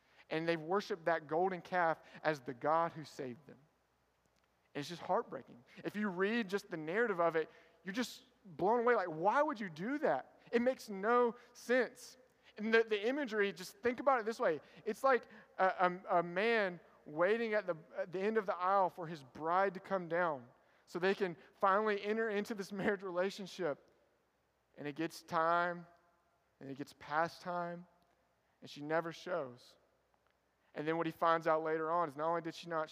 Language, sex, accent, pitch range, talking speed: English, male, American, 160-200 Hz, 185 wpm